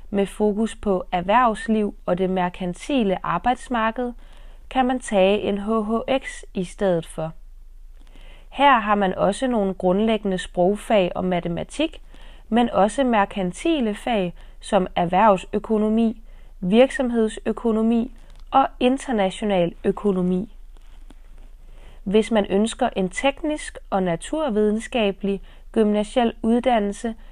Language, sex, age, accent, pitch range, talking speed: Danish, female, 30-49, native, 190-245 Hz, 95 wpm